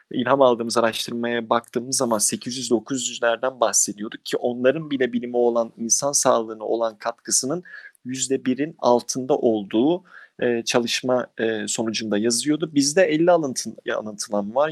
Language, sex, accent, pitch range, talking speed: Turkish, male, native, 120-145 Hz, 110 wpm